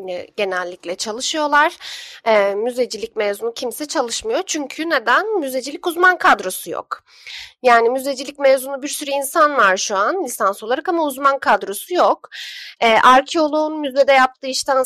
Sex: female